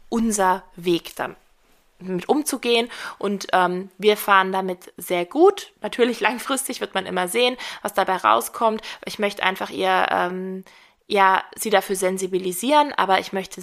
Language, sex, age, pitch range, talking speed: German, female, 20-39, 185-225 Hz, 140 wpm